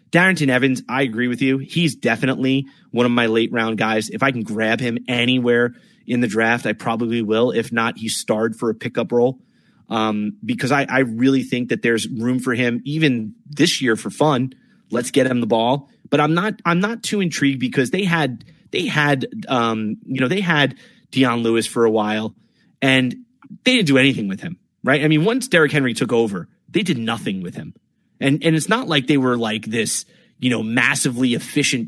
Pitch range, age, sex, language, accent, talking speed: 120-165 Hz, 30-49, male, English, American, 205 wpm